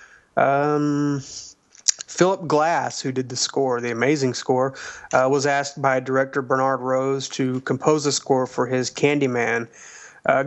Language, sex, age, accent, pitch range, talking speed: English, male, 30-49, American, 130-145 Hz, 145 wpm